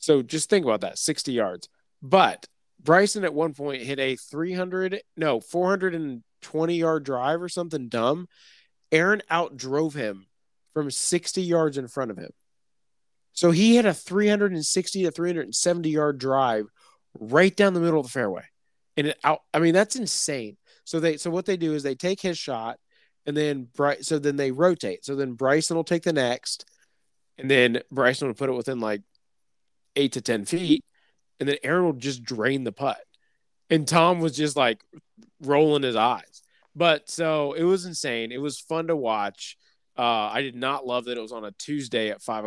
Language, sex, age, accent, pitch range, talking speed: English, male, 30-49, American, 125-170 Hz, 200 wpm